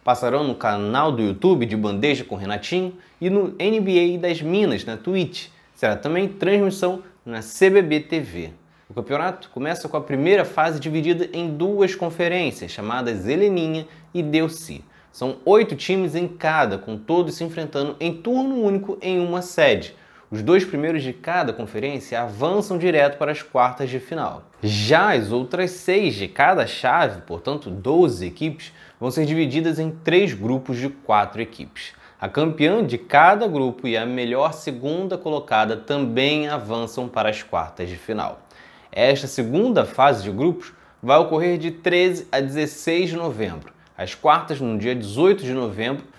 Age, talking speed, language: 20-39, 155 wpm, Portuguese